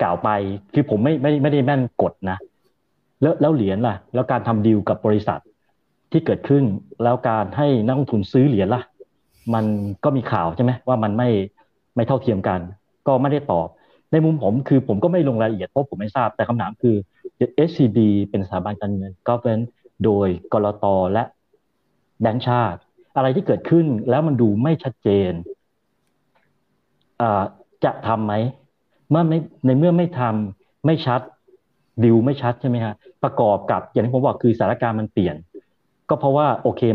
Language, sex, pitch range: Thai, male, 105-140 Hz